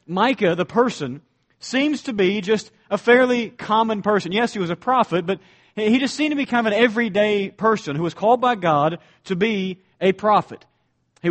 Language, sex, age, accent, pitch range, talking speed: English, male, 40-59, American, 180-225 Hz, 195 wpm